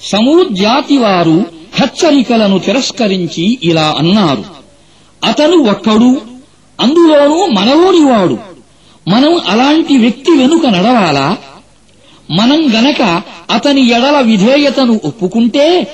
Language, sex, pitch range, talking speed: Arabic, male, 200-290 Hz, 105 wpm